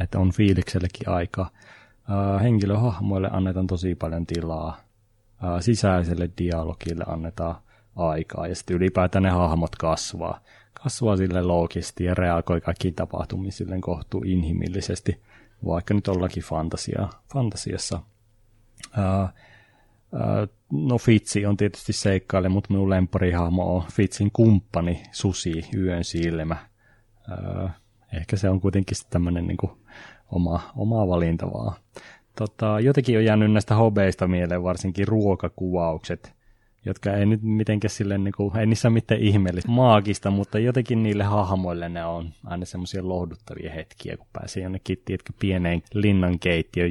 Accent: native